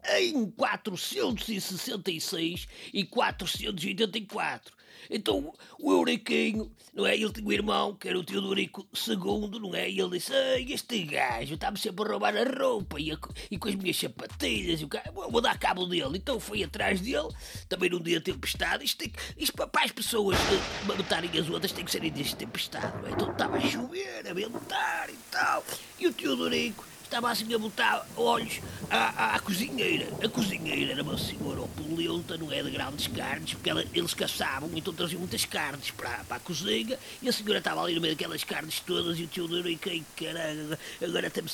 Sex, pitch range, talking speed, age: male, 170-235 Hz, 180 wpm, 30-49